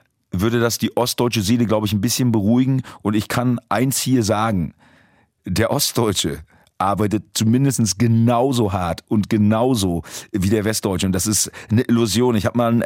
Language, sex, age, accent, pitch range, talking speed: German, male, 40-59, German, 105-125 Hz, 170 wpm